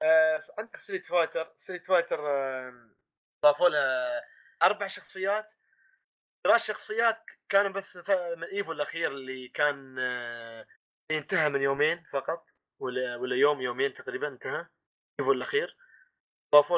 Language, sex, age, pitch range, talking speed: Arabic, male, 20-39, 135-210 Hz, 110 wpm